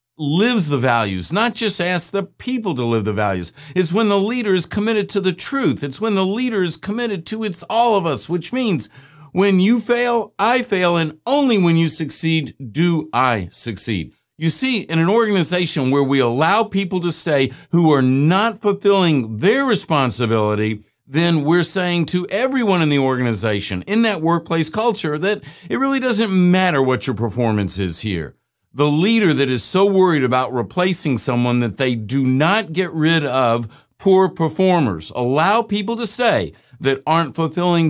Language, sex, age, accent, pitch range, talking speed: English, male, 50-69, American, 125-195 Hz, 175 wpm